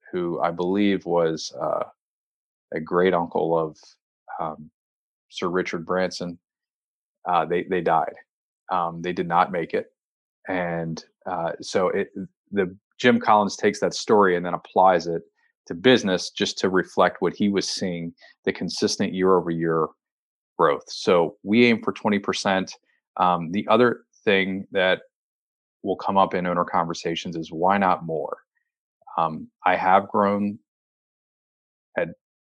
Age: 30-49